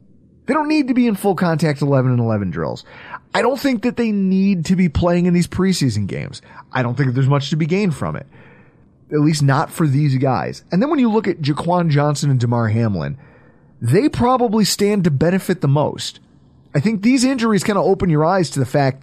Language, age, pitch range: English, 30-49, 130-190 Hz